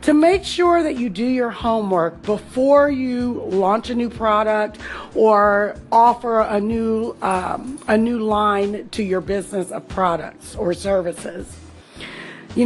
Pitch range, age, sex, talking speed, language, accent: 210-285 Hz, 40-59, female, 135 wpm, English, American